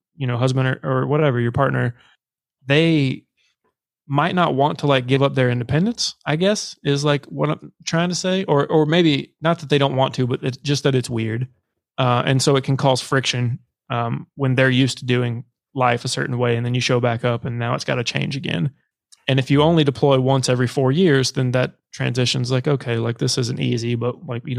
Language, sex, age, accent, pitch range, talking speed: English, male, 20-39, American, 120-140 Hz, 225 wpm